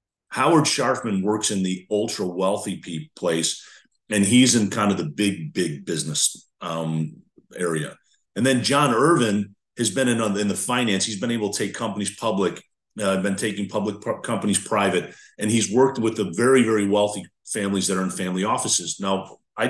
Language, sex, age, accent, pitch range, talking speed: English, male, 40-59, American, 100-140 Hz, 175 wpm